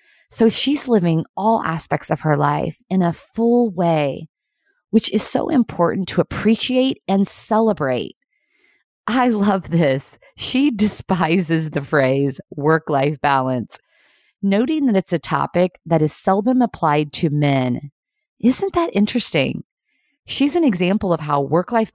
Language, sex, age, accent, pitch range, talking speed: English, female, 20-39, American, 155-230 Hz, 135 wpm